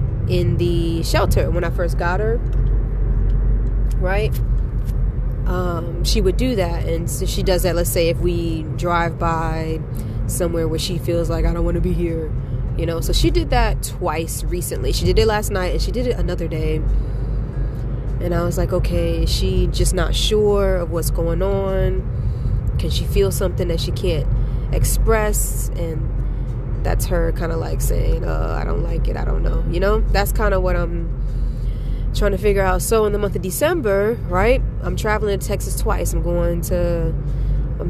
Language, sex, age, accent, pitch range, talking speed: English, female, 20-39, American, 125-175 Hz, 185 wpm